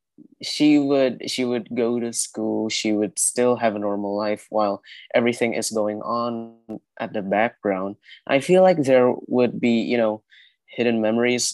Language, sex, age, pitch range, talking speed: Indonesian, male, 20-39, 105-120 Hz, 165 wpm